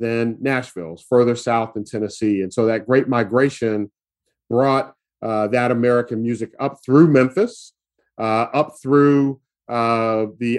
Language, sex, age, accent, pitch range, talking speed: English, male, 40-59, American, 110-130 Hz, 135 wpm